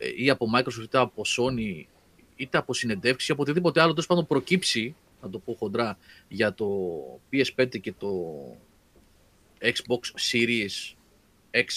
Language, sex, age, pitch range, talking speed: Greek, male, 30-49, 105-155 Hz, 145 wpm